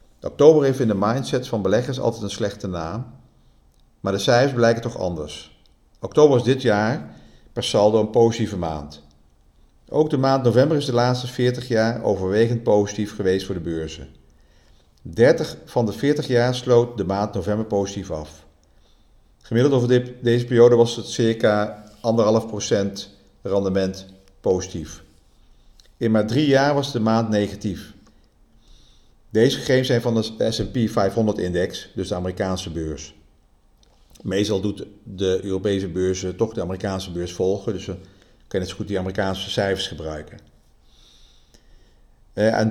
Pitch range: 95-120 Hz